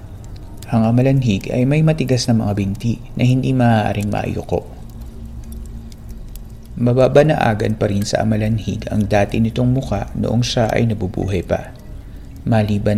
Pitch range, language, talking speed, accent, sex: 100-120 Hz, Filipino, 135 wpm, native, male